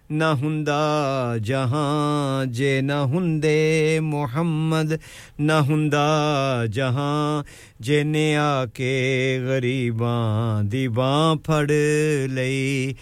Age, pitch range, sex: 50-69, 135-195 Hz, male